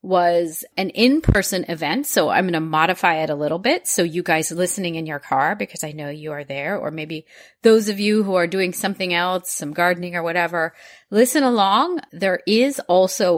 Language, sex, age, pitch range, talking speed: English, female, 30-49, 165-215 Hz, 200 wpm